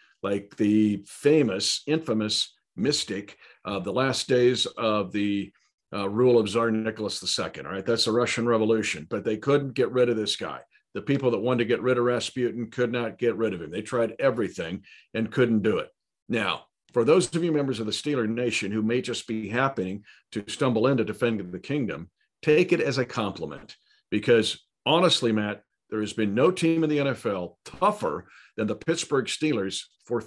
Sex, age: male, 50-69